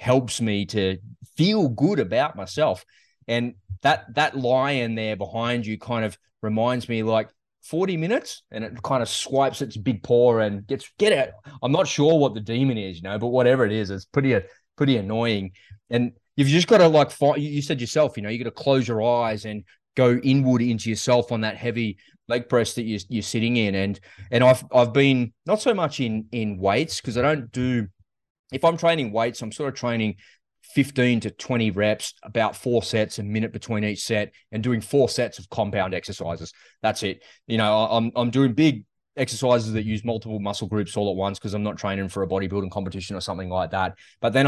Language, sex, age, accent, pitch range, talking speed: English, male, 20-39, Australian, 100-125 Hz, 210 wpm